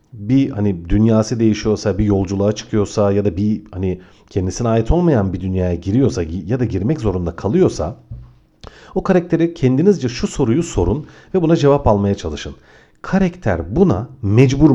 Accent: native